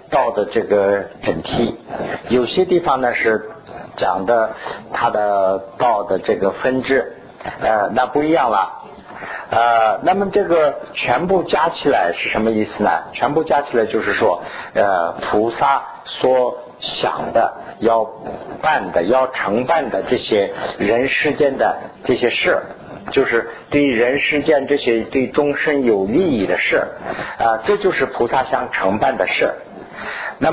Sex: male